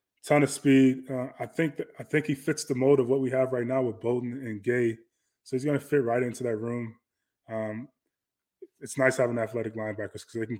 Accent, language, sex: American, English, male